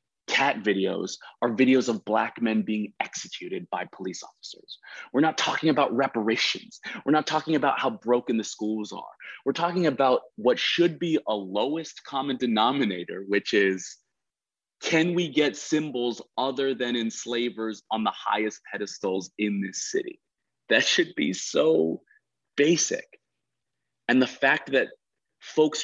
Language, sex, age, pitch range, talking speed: English, male, 30-49, 115-170 Hz, 145 wpm